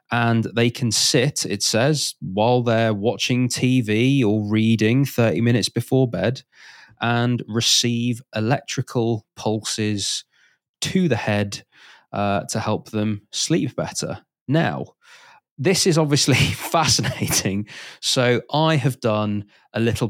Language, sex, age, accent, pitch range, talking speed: English, male, 20-39, British, 105-130 Hz, 120 wpm